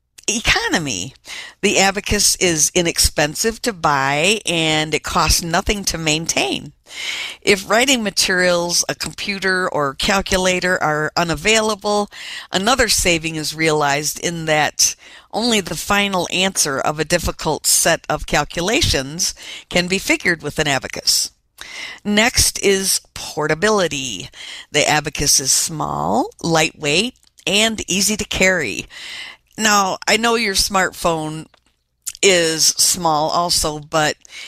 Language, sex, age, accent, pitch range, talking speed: English, female, 50-69, American, 150-200 Hz, 115 wpm